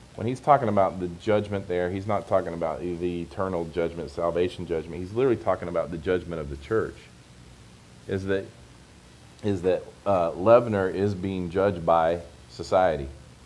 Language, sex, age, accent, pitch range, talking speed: English, male, 40-59, American, 80-105 Hz, 160 wpm